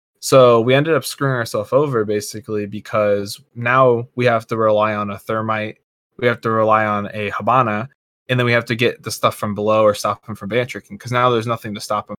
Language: English